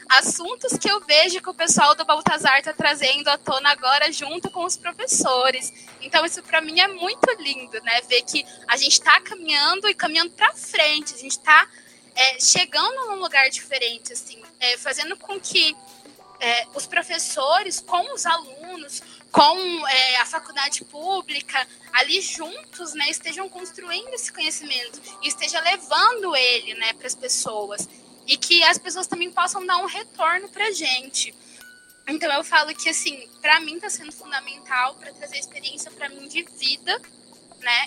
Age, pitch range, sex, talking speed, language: 10-29, 255-330 Hz, female, 165 wpm, Portuguese